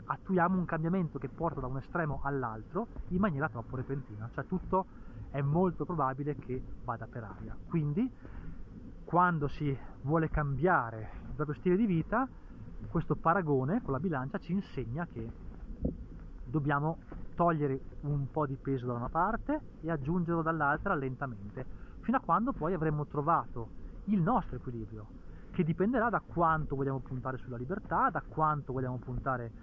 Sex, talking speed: male, 150 wpm